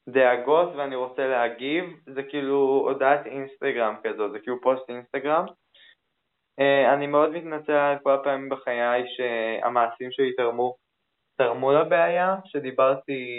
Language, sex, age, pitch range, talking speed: Hebrew, male, 20-39, 125-150 Hz, 110 wpm